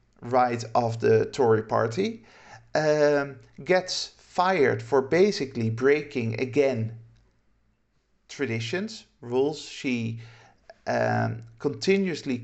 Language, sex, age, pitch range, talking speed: English, male, 50-69, 120-170 Hz, 80 wpm